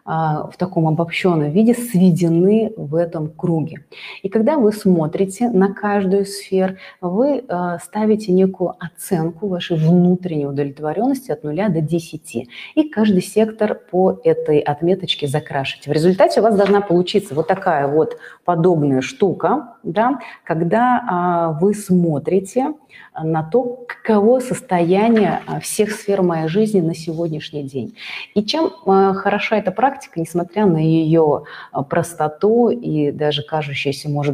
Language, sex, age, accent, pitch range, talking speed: Russian, female, 30-49, native, 160-205 Hz, 125 wpm